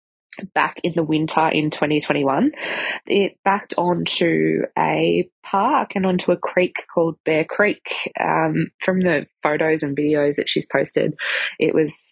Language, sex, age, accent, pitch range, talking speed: English, female, 20-39, Australian, 150-190 Hz, 160 wpm